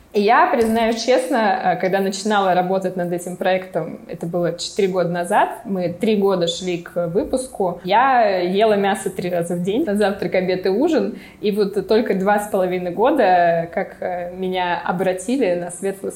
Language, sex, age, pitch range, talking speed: Russian, female, 20-39, 180-210 Hz, 155 wpm